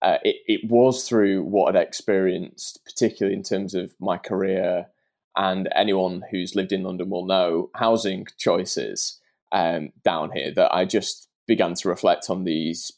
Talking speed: 160 wpm